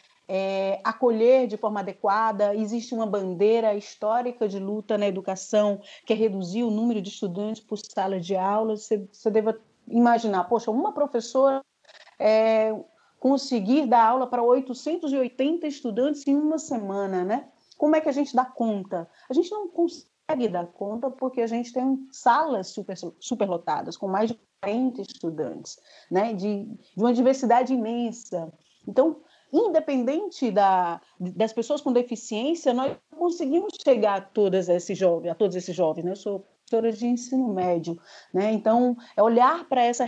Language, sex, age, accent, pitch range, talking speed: Portuguese, female, 40-59, Brazilian, 200-255 Hz, 155 wpm